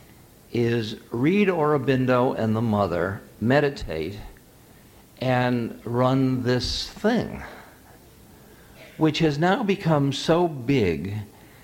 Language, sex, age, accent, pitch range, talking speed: English, male, 60-79, American, 100-140 Hz, 90 wpm